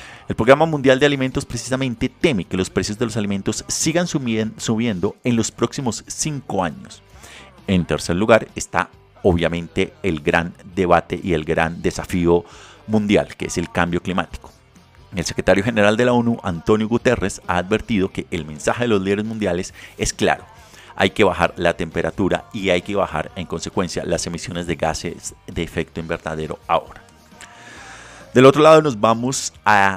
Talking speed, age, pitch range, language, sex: 165 wpm, 30-49, 85-115 Hz, Spanish, male